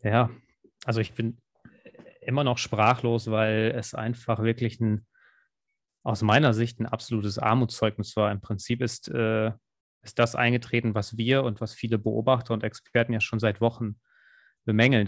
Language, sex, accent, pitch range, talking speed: German, male, German, 110-125 Hz, 155 wpm